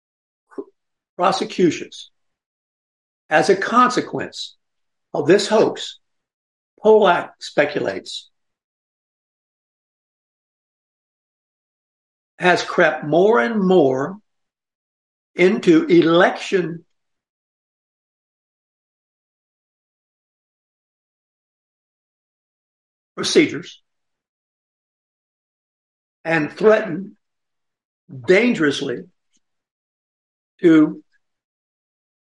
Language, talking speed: English, 40 wpm